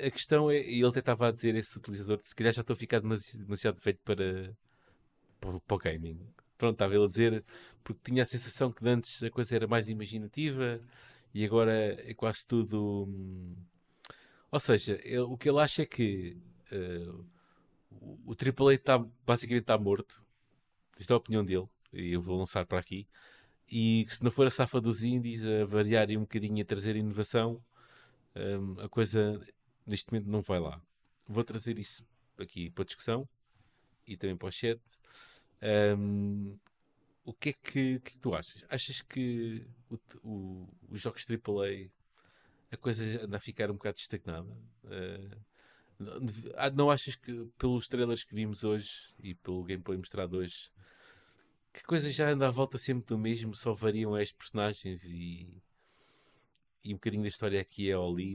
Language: Portuguese